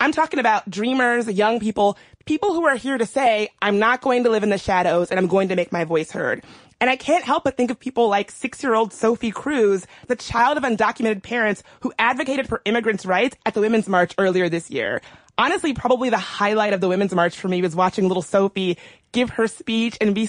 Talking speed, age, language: 225 wpm, 30-49, English